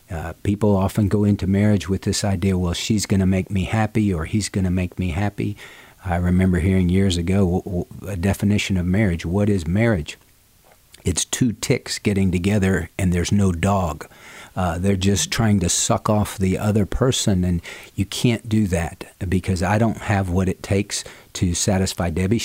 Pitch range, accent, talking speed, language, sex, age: 90-105 Hz, American, 185 wpm, English, male, 50-69